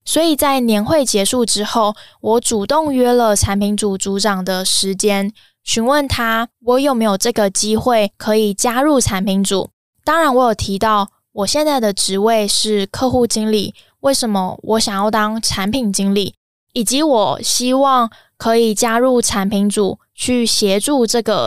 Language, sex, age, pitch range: Chinese, female, 10-29, 205-245 Hz